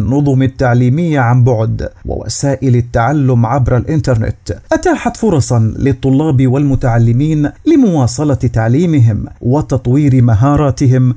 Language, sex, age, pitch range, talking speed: Arabic, male, 50-69, 120-145 Hz, 85 wpm